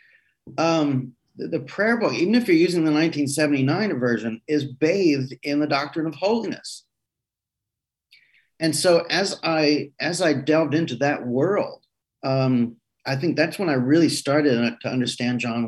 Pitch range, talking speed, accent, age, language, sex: 125-165 Hz, 155 wpm, American, 40-59, English, male